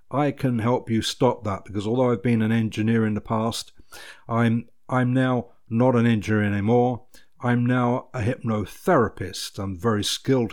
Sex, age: male, 50-69